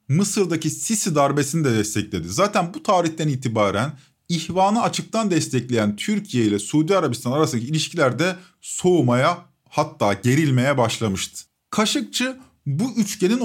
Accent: native